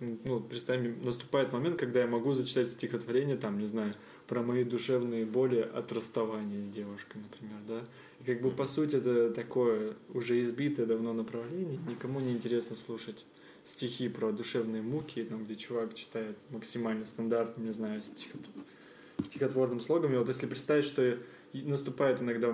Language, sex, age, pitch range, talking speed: Russian, male, 20-39, 115-135 Hz, 155 wpm